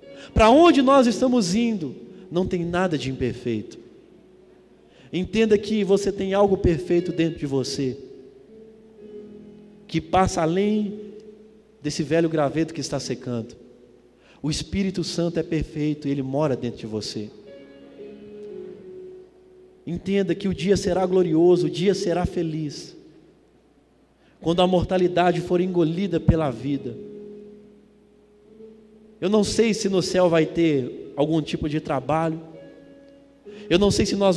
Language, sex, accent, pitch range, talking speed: Portuguese, male, Brazilian, 150-205 Hz, 125 wpm